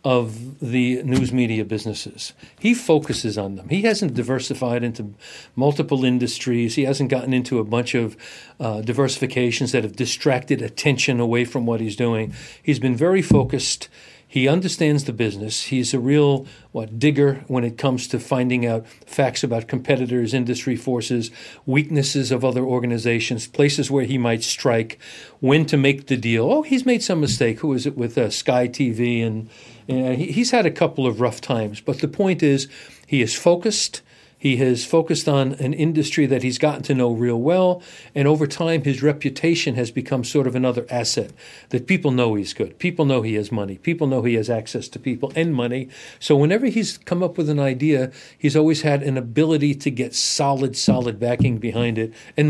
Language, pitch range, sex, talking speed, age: English, 120-145 Hz, male, 185 wpm, 40-59